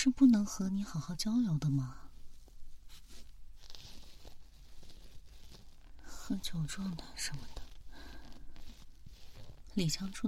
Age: 30-49